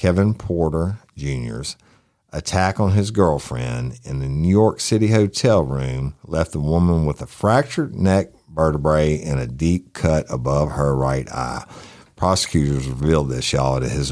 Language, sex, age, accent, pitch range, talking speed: English, male, 50-69, American, 70-95 Hz, 155 wpm